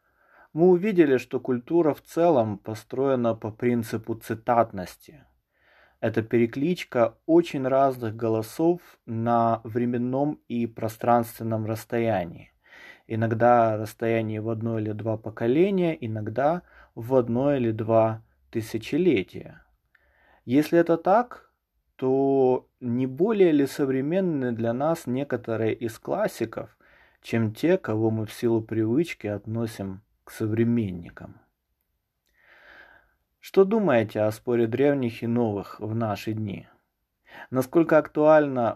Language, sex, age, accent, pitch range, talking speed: Russian, male, 20-39, native, 110-135 Hz, 105 wpm